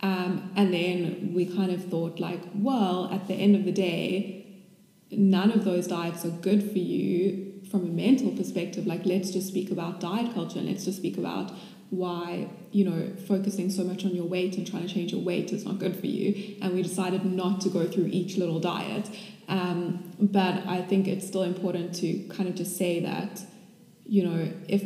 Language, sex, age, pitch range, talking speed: English, female, 20-39, 180-195 Hz, 205 wpm